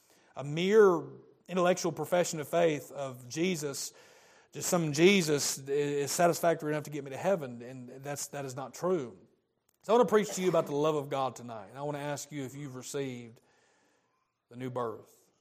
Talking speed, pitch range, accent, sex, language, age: 195 wpm, 120-140 Hz, American, male, English, 40-59